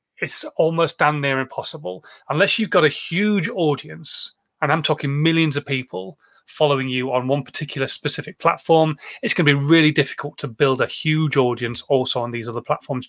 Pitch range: 130-165 Hz